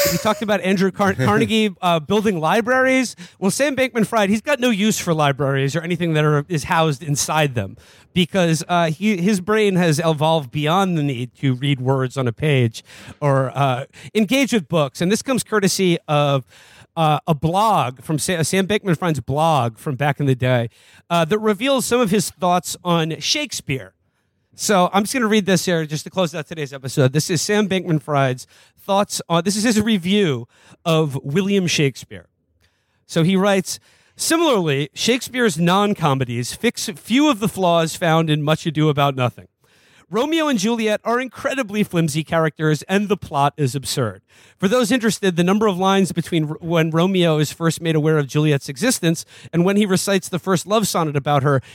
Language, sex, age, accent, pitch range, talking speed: English, male, 30-49, American, 140-200 Hz, 175 wpm